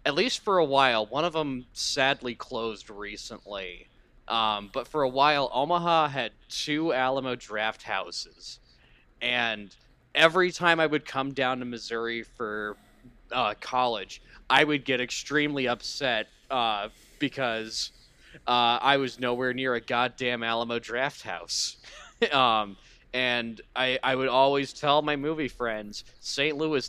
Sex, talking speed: male, 140 wpm